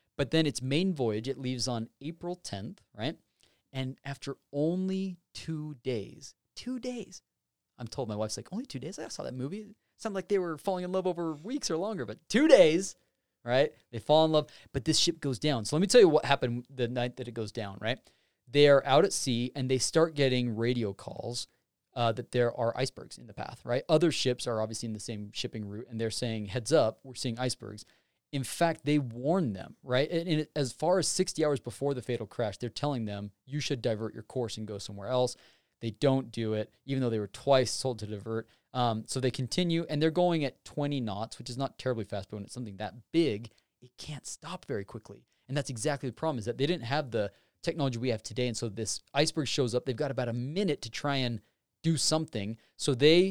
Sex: male